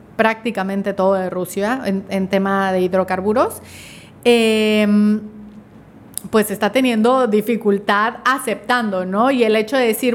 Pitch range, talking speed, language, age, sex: 205-255 Hz, 125 wpm, Spanish, 30-49, female